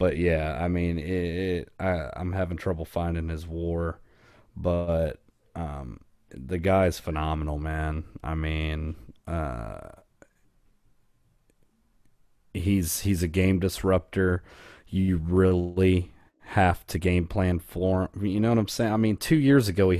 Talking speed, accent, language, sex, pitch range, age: 140 wpm, American, English, male, 85-105 Hz, 30-49